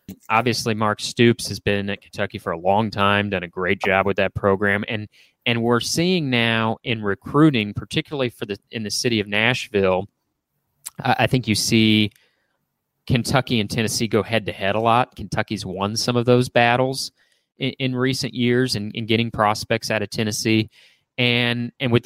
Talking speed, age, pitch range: 175 wpm, 30-49, 105-125 Hz